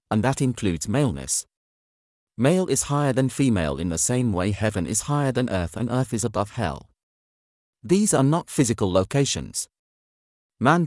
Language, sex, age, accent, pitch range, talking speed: English, male, 40-59, British, 95-135 Hz, 160 wpm